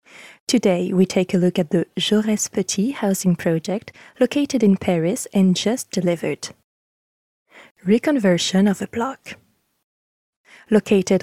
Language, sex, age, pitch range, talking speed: French, female, 20-39, 180-225 Hz, 120 wpm